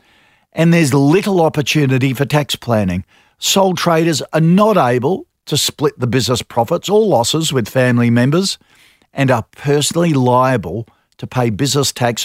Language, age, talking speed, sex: English, 50-69, 145 wpm, male